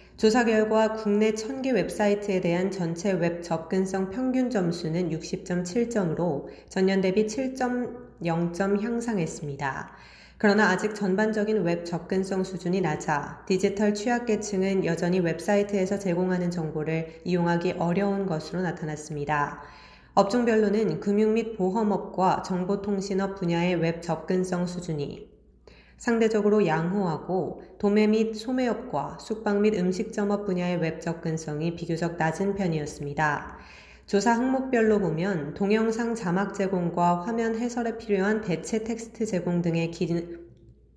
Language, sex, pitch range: Korean, female, 170-215 Hz